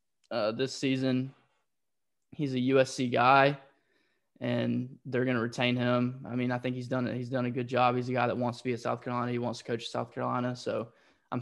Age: 20-39